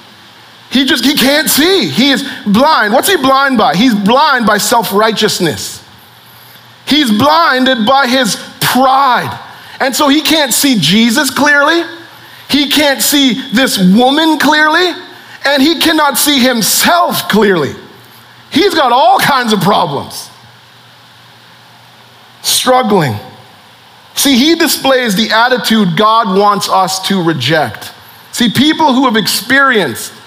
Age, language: 40-59, English